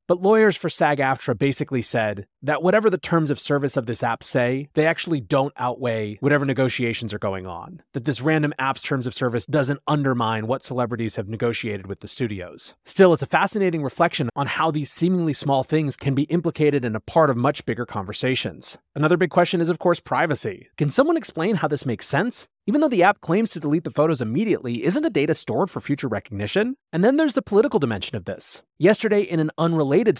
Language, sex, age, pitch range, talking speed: English, male, 30-49, 125-175 Hz, 210 wpm